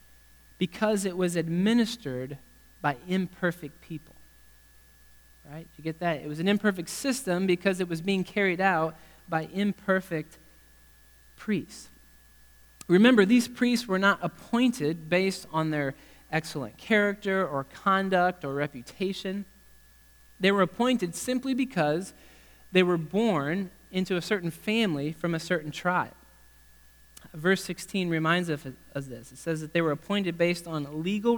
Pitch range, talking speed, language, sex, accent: 135-190 Hz, 135 wpm, English, male, American